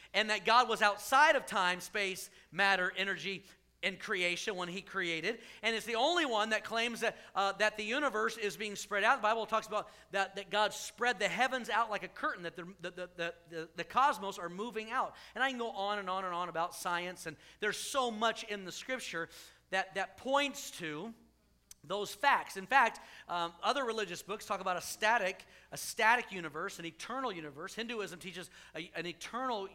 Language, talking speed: English, 200 wpm